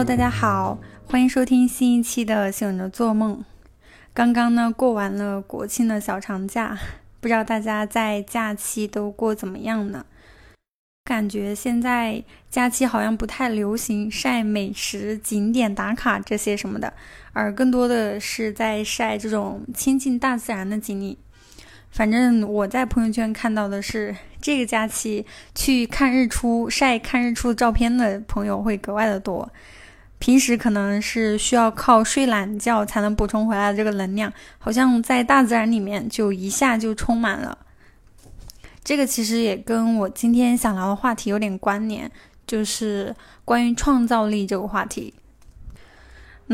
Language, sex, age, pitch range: Chinese, female, 10-29, 205-240 Hz